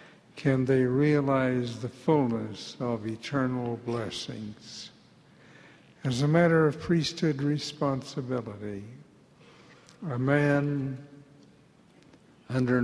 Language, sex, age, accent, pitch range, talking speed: English, male, 60-79, American, 120-145 Hz, 80 wpm